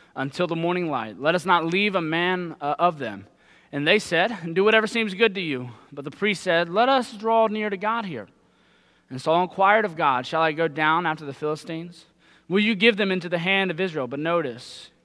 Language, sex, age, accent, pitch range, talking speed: English, male, 20-39, American, 155-200 Hz, 220 wpm